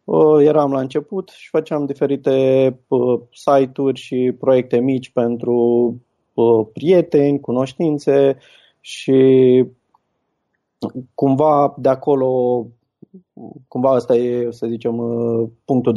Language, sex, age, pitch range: Romanian, male, 20-39, 120-145 Hz